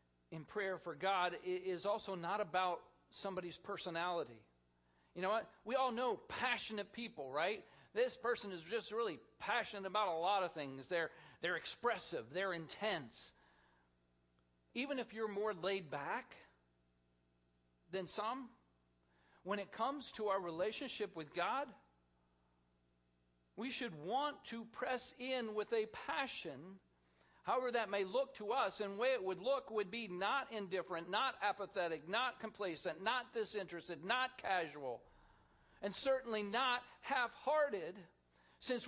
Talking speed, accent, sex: 140 wpm, American, male